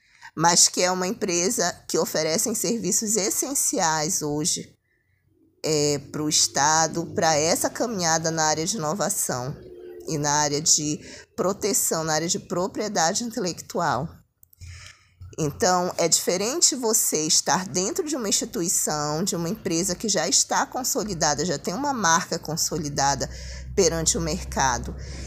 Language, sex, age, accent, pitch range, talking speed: Portuguese, female, 20-39, Brazilian, 150-225 Hz, 130 wpm